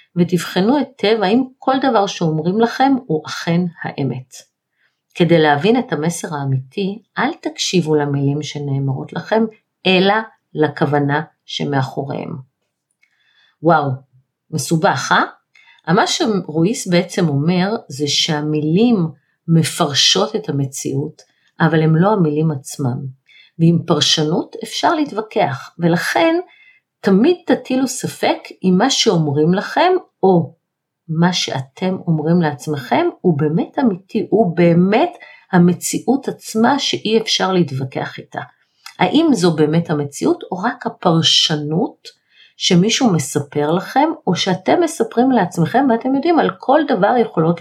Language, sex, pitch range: Hebrew, female, 150-225 Hz